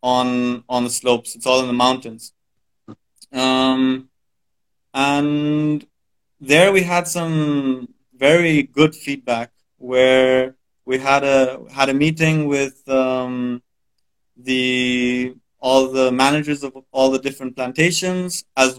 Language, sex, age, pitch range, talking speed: English, male, 30-49, 125-145 Hz, 120 wpm